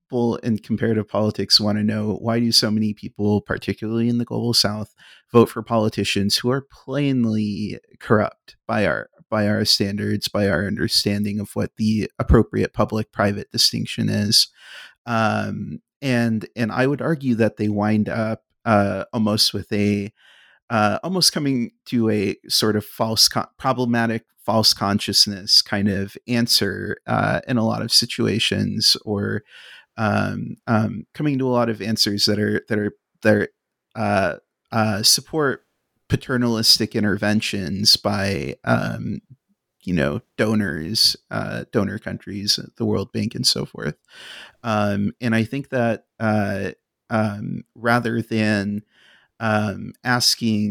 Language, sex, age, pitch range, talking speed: English, male, 30-49, 105-115 Hz, 140 wpm